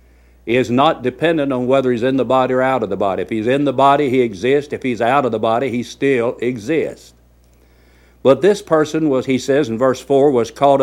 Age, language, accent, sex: 60-79, English, American, male